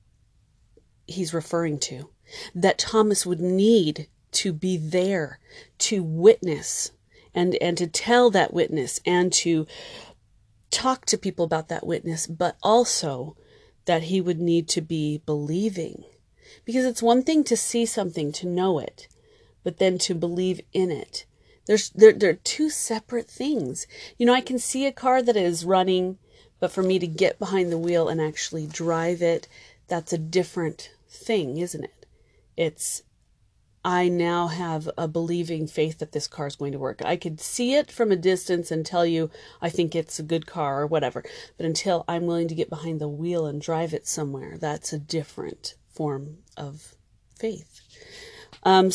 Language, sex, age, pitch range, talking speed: English, female, 30-49, 160-195 Hz, 170 wpm